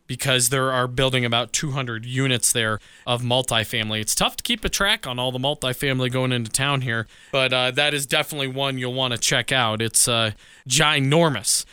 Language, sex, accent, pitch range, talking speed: English, male, American, 125-165 Hz, 195 wpm